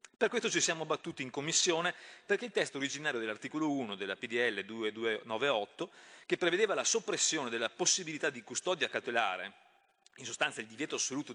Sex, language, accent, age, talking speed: male, Italian, native, 30-49, 160 wpm